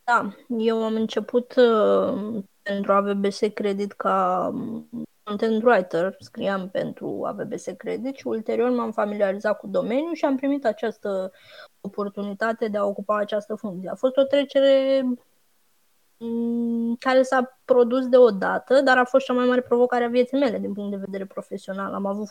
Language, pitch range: Romanian, 205-245 Hz